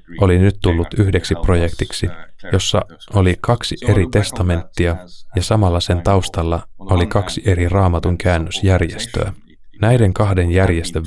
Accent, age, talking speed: native, 20-39, 120 wpm